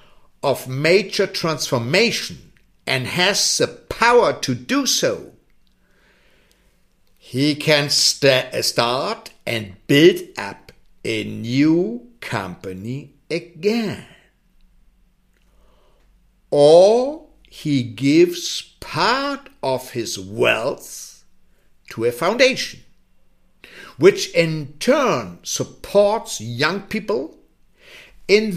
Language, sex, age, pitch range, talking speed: English, male, 60-79, 125-195 Hz, 80 wpm